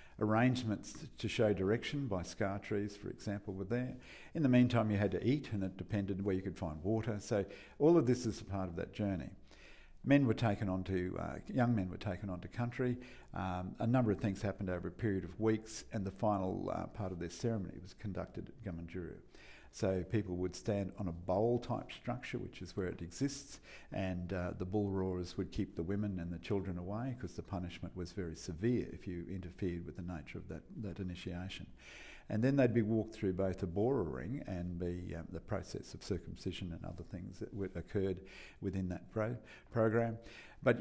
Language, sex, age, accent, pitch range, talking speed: English, male, 50-69, Australian, 90-110 Hz, 210 wpm